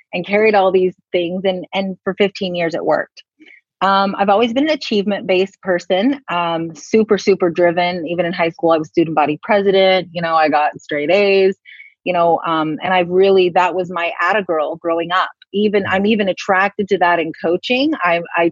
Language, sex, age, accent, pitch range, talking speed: English, female, 30-49, American, 165-195 Hz, 200 wpm